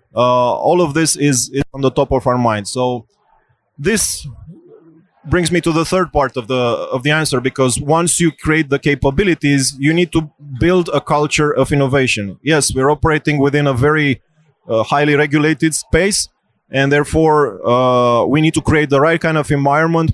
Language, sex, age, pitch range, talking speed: English, male, 20-39, 130-155 Hz, 180 wpm